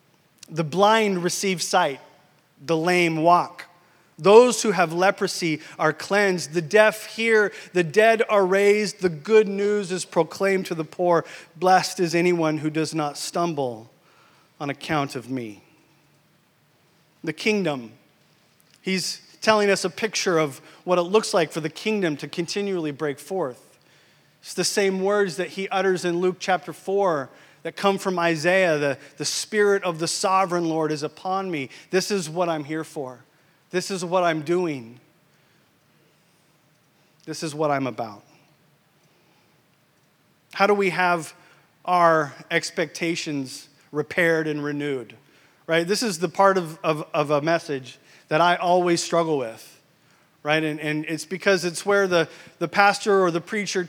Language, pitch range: English, 155-190 Hz